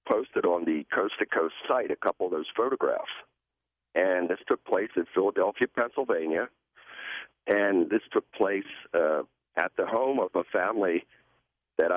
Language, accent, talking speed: English, American, 150 wpm